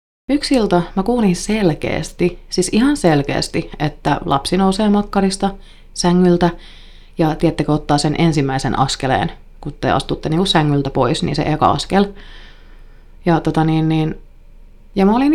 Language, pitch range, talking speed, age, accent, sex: Finnish, 145-180 Hz, 135 wpm, 30-49, native, female